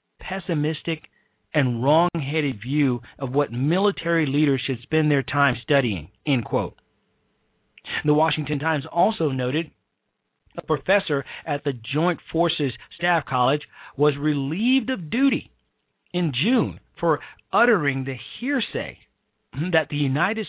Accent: American